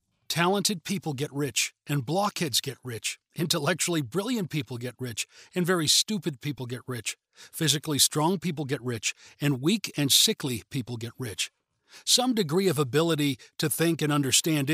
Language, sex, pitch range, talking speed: English, male, 130-175 Hz, 160 wpm